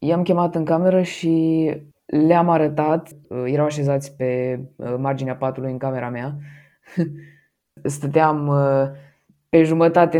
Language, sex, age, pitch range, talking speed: Romanian, female, 20-39, 145-165 Hz, 105 wpm